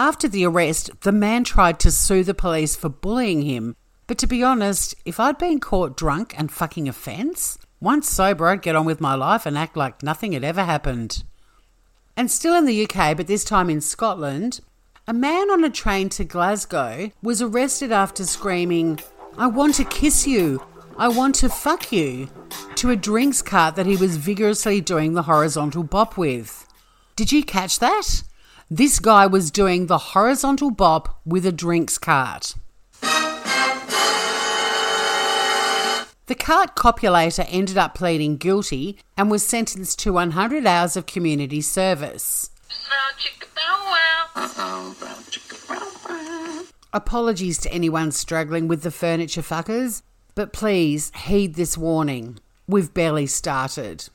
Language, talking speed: English, 145 wpm